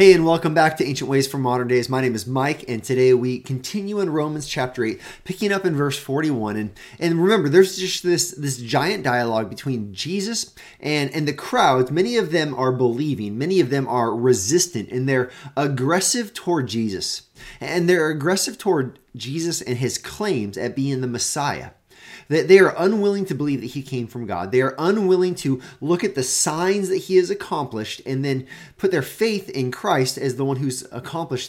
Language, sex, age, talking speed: English, male, 30-49, 200 wpm